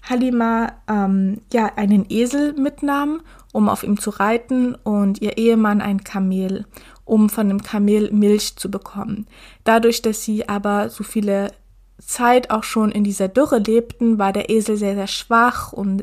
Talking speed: 160 wpm